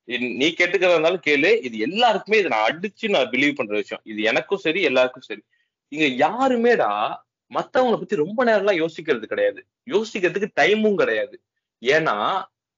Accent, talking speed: native, 140 wpm